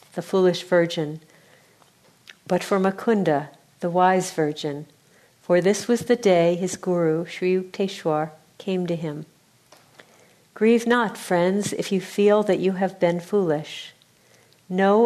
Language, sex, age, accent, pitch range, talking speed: English, female, 50-69, American, 165-210 Hz, 130 wpm